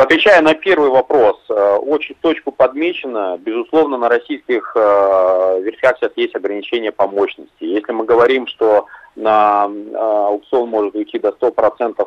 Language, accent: Russian, native